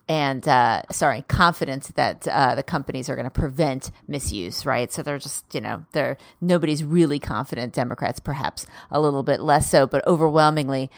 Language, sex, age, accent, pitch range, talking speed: English, female, 30-49, American, 130-170 Hz, 175 wpm